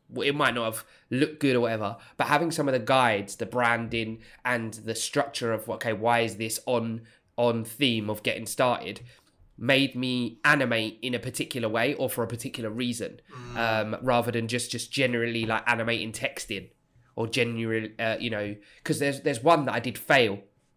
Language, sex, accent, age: English, male, British, 20-39